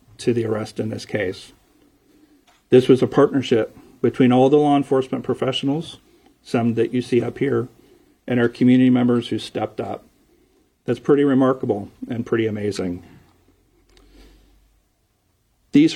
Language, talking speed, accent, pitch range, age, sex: English, 135 wpm, American, 115-130 Hz, 50-69, male